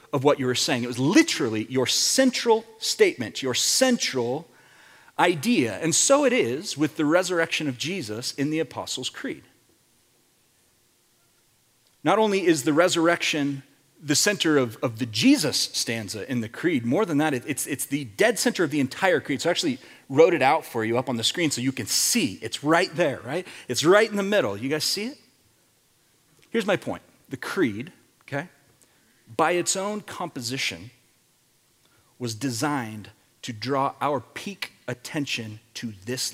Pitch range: 120-160 Hz